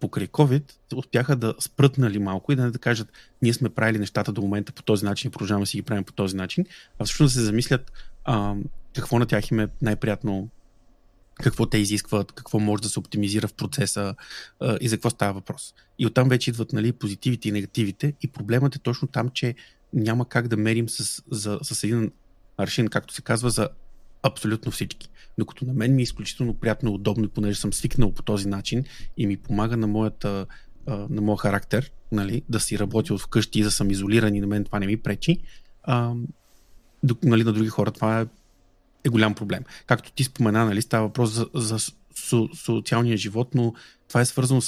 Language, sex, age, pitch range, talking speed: Bulgarian, male, 30-49, 105-125 Hz, 200 wpm